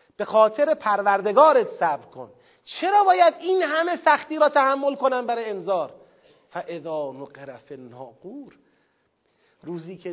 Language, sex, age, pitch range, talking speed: Persian, male, 40-59, 220-320 Hz, 120 wpm